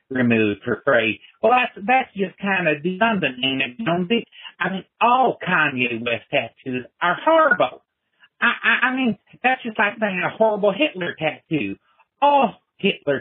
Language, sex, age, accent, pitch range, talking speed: English, male, 60-79, American, 160-205 Hz, 150 wpm